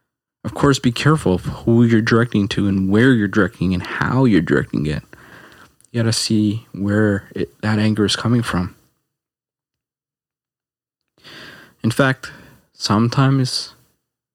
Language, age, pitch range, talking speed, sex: English, 20-39, 95-125 Hz, 130 wpm, male